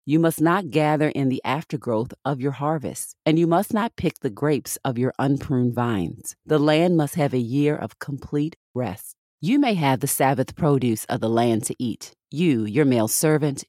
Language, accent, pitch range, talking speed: English, American, 120-155 Hz, 195 wpm